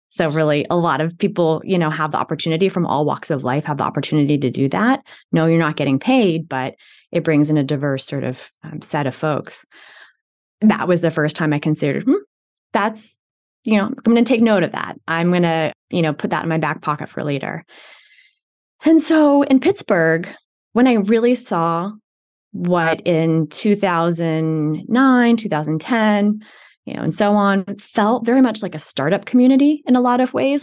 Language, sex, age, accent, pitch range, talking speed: English, female, 20-39, American, 155-210 Hz, 195 wpm